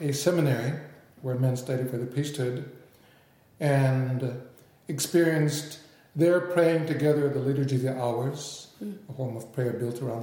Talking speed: 145 wpm